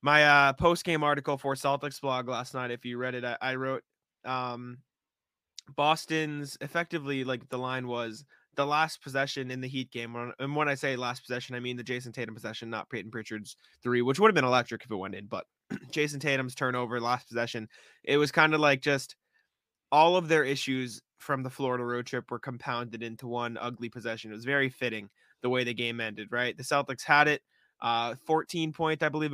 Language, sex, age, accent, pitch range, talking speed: English, male, 20-39, American, 120-140 Hz, 205 wpm